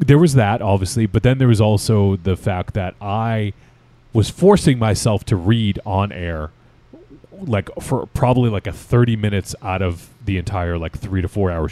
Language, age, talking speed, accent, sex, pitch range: English, 30-49, 185 wpm, American, male, 90-120 Hz